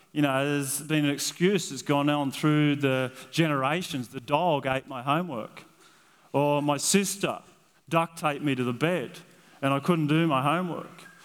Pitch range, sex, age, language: 145-190 Hz, male, 30-49, English